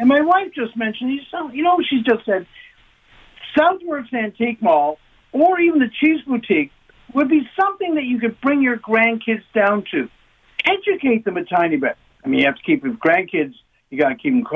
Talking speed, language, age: 185 wpm, English, 60-79